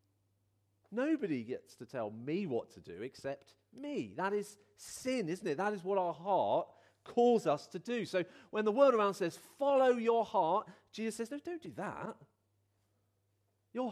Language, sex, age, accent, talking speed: English, male, 40-59, British, 170 wpm